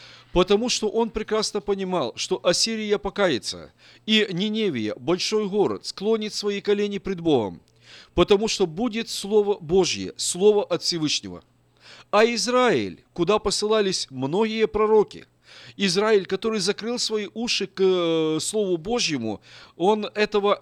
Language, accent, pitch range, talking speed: Russian, native, 155-215 Hz, 120 wpm